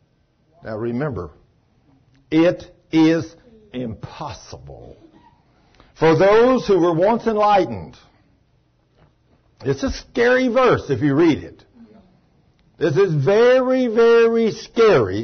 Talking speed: 95 wpm